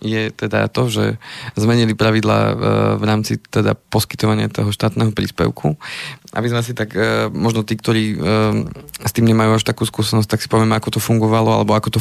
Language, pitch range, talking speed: Slovak, 105-115 Hz, 175 wpm